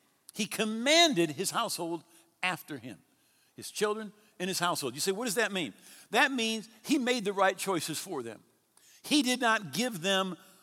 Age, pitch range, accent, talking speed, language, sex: 50-69, 160-215 Hz, American, 175 wpm, English, male